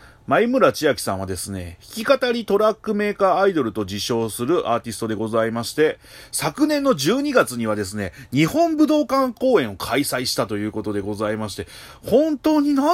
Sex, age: male, 30-49